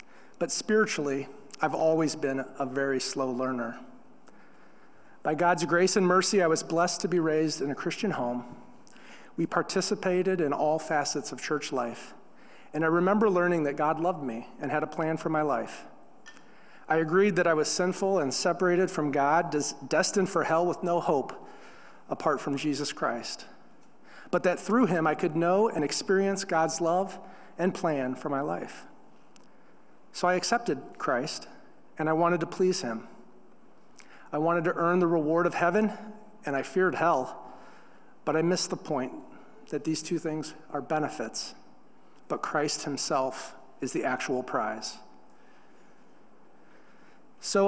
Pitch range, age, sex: 145-180 Hz, 40-59, male